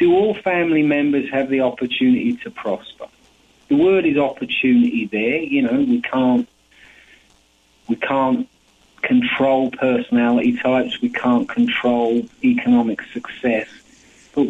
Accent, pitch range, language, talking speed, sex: British, 115-170 Hz, English, 120 wpm, male